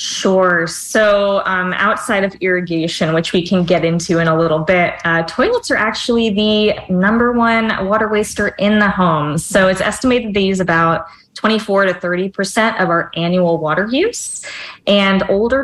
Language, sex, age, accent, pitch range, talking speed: English, female, 20-39, American, 170-210 Hz, 165 wpm